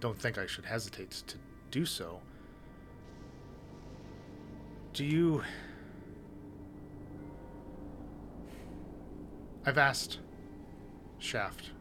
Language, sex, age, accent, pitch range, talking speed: English, male, 30-49, American, 95-115 Hz, 65 wpm